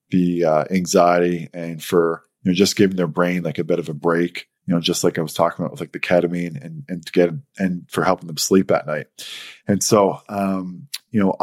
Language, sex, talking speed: English, male, 235 wpm